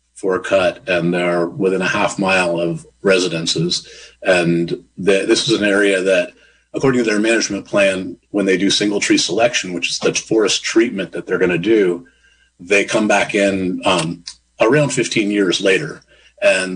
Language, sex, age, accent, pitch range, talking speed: English, male, 40-59, American, 95-120 Hz, 170 wpm